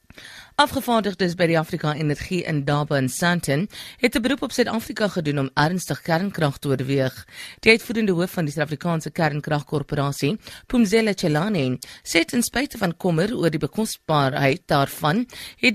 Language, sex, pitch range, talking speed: English, female, 145-200 Hz, 150 wpm